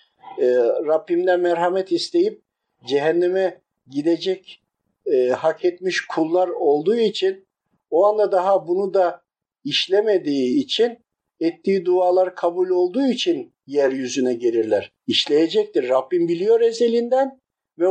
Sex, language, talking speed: male, Turkish, 105 wpm